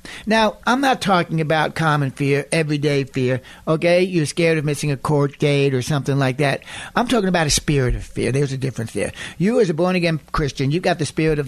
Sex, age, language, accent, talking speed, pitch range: male, 60-79, English, American, 220 wpm, 140-185 Hz